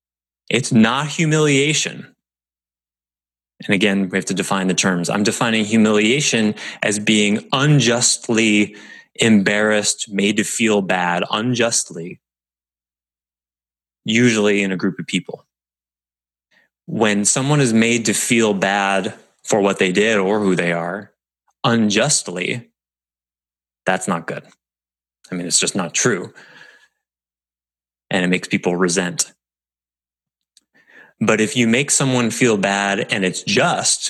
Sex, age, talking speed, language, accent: male, 20-39, 120 wpm, English, American